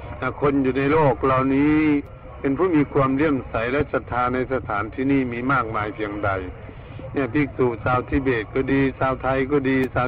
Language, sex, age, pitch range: Thai, male, 60-79, 115-140 Hz